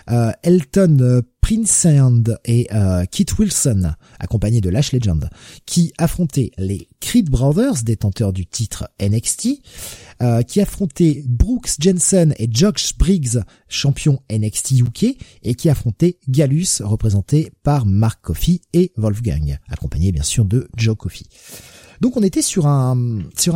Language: French